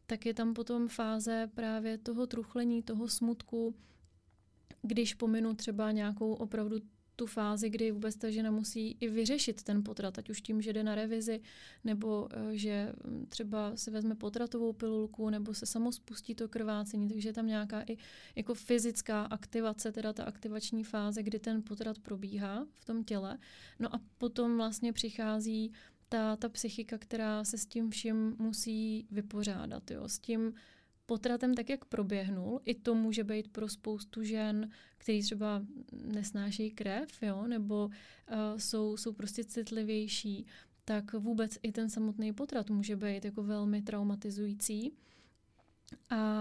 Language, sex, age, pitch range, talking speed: Czech, female, 30-49, 215-235 Hz, 150 wpm